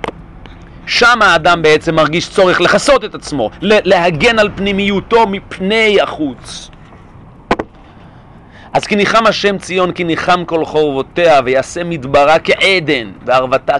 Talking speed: 115 wpm